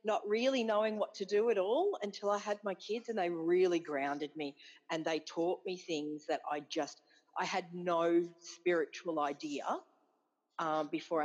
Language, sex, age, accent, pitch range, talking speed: English, female, 40-59, Australian, 165-210 Hz, 175 wpm